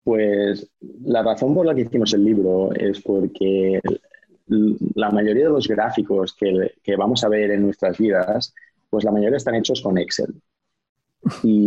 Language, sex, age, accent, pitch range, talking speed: Spanish, male, 20-39, Spanish, 100-125 Hz, 165 wpm